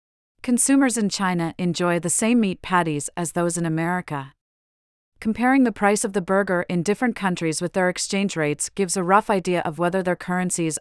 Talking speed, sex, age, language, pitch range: 185 wpm, female, 40-59, English, 165-200 Hz